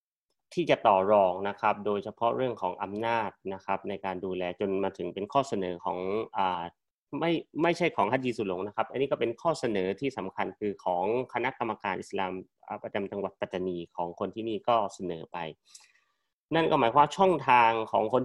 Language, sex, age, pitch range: Thai, male, 30-49, 105-145 Hz